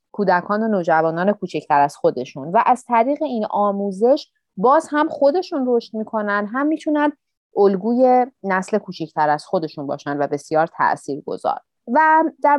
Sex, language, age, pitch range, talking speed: female, Persian, 30-49, 175-250 Hz, 140 wpm